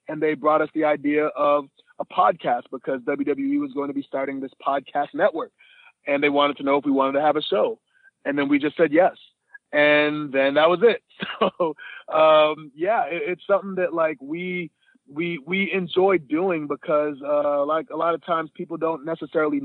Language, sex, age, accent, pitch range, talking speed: English, male, 30-49, American, 145-170 Hz, 200 wpm